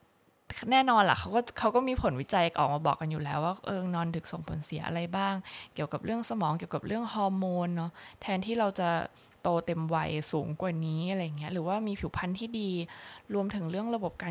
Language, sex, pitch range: Thai, female, 170-215 Hz